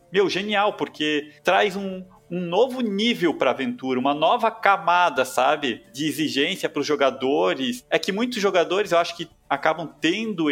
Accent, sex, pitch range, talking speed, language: Brazilian, male, 130-200 Hz, 160 wpm, Portuguese